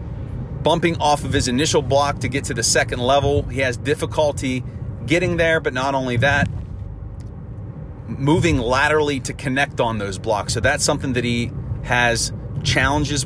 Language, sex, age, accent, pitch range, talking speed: English, male, 30-49, American, 120-140 Hz, 160 wpm